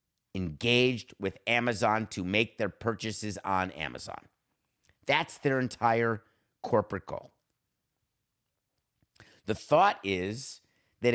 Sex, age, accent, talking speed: male, 50-69, American, 95 wpm